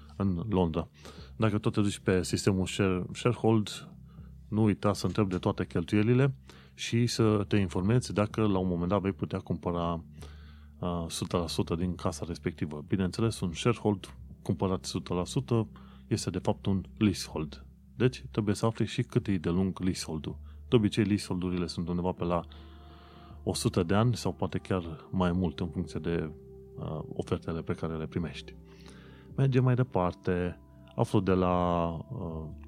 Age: 30-49